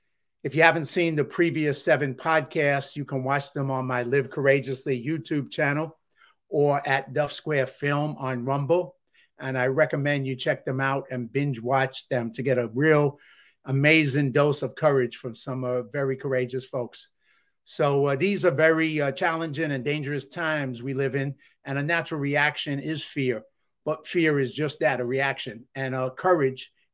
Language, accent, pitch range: English, American, 130-155 Hz